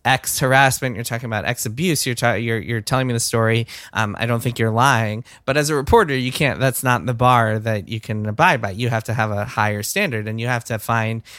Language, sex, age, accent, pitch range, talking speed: English, male, 20-39, American, 115-135 Hz, 250 wpm